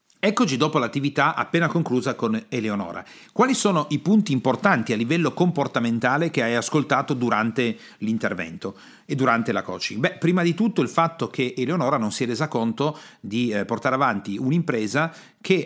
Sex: male